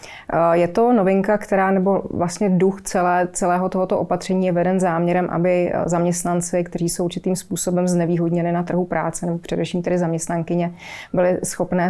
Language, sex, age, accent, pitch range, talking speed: Czech, female, 30-49, native, 170-185 Hz, 150 wpm